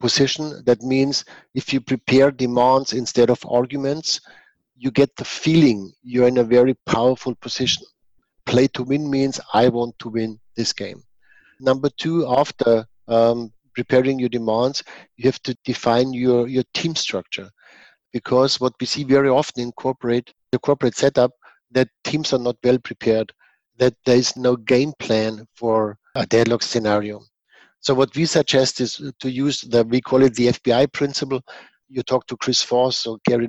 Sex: male